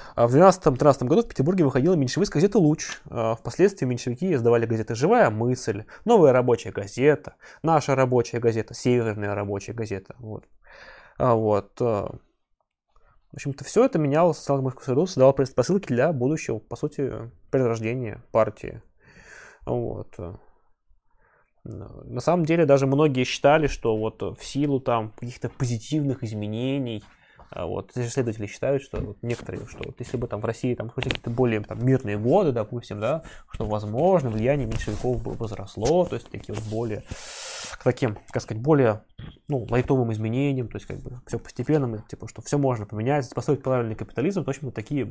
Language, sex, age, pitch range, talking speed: Russian, male, 20-39, 110-140 Hz, 155 wpm